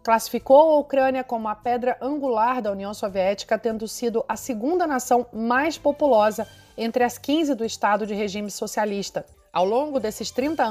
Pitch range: 210-265 Hz